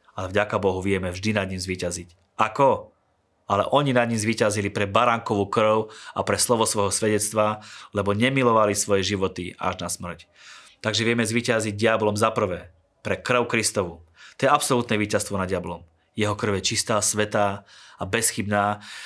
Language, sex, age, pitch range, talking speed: Slovak, male, 30-49, 100-115 Hz, 160 wpm